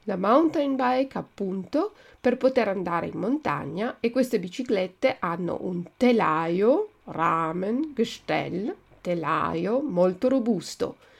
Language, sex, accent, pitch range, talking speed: Italian, female, native, 180-265 Hz, 105 wpm